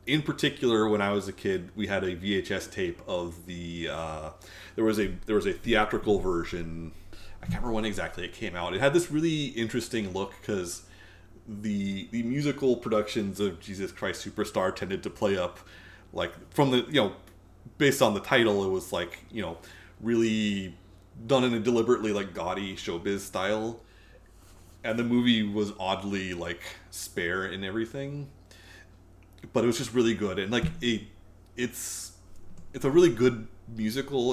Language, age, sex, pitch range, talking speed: English, 30-49, male, 90-110 Hz, 170 wpm